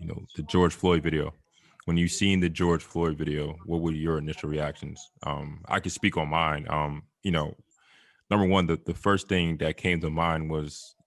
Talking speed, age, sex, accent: 205 wpm, 20-39, male, American